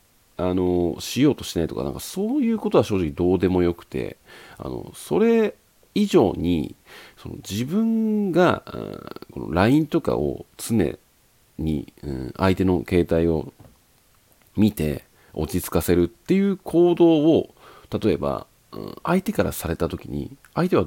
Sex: male